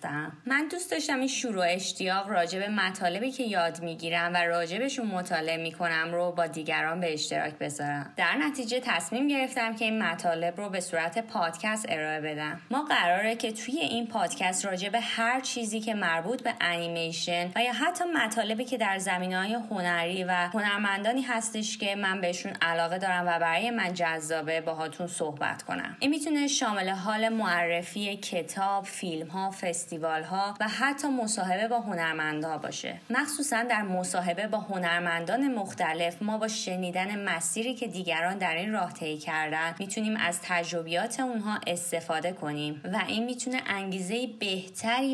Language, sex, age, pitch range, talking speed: English, female, 20-39, 170-230 Hz, 155 wpm